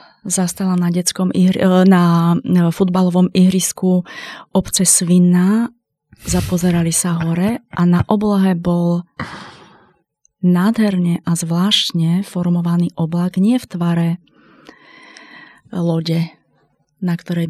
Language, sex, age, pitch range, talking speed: Slovak, female, 30-49, 170-195 Hz, 90 wpm